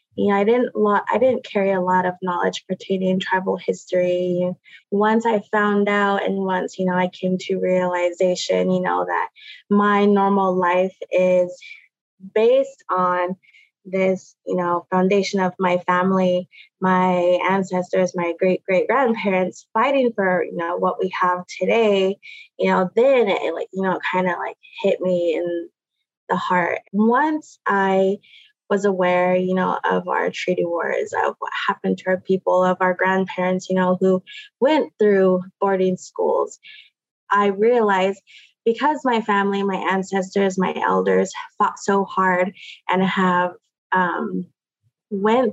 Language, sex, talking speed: English, female, 145 wpm